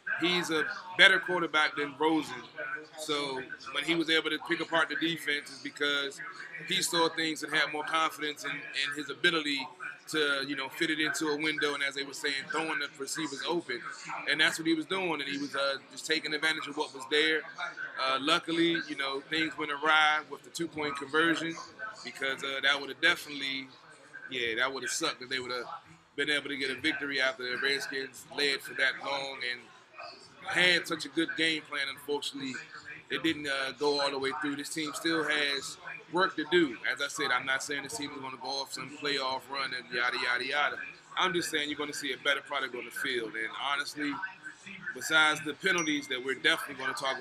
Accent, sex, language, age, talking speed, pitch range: American, male, English, 30-49, 215 wpm, 140-165 Hz